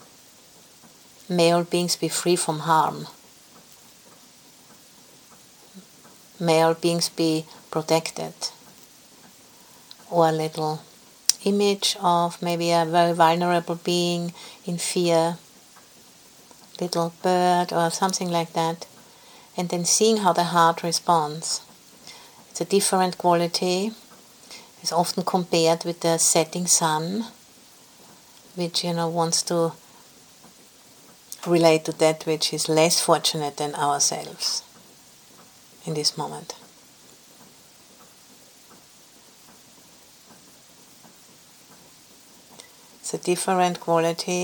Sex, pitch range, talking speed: female, 160-180 Hz, 95 wpm